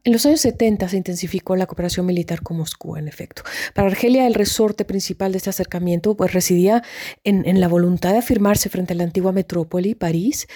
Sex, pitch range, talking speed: female, 170-195 Hz, 200 wpm